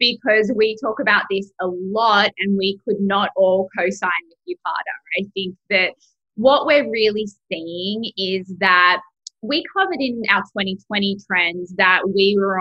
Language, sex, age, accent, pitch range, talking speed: English, female, 20-39, Australian, 190-235 Hz, 160 wpm